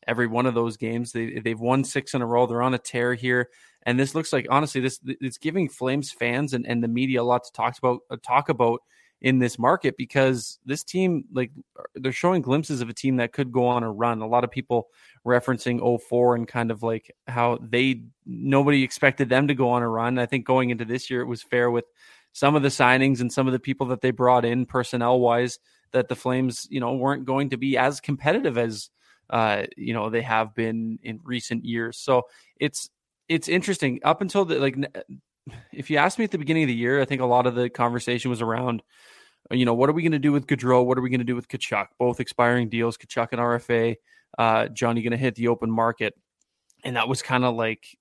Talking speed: 240 wpm